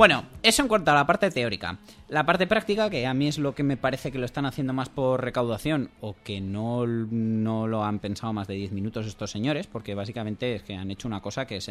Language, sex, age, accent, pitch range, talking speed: Spanish, male, 20-39, Spanish, 105-140 Hz, 250 wpm